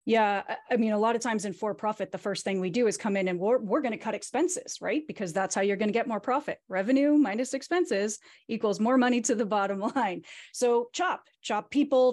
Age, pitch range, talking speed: 30-49, 195-255 Hz, 235 wpm